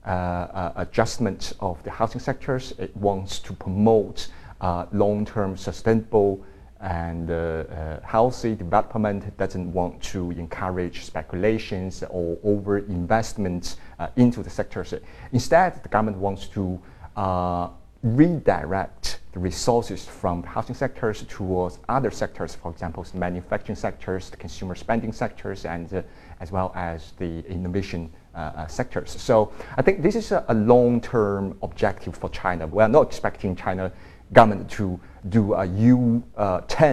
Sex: male